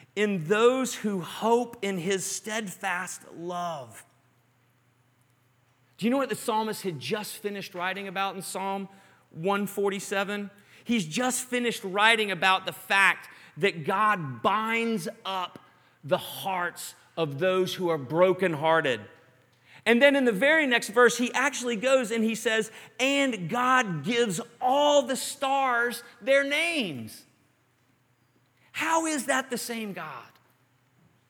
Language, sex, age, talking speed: English, male, 40-59, 130 wpm